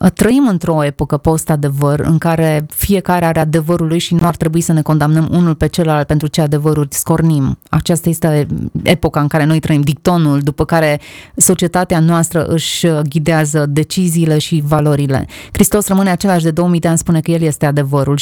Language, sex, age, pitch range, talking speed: Romanian, female, 20-39, 155-180 Hz, 175 wpm